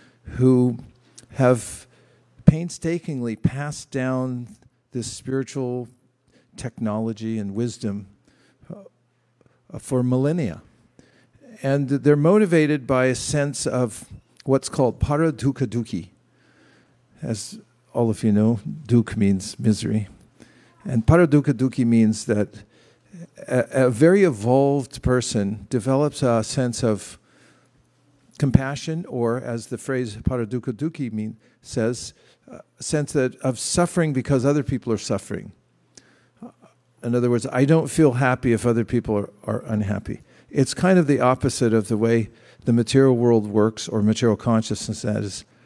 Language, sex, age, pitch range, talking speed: English, male, 50-69, 110-135 Hz, 120 wpm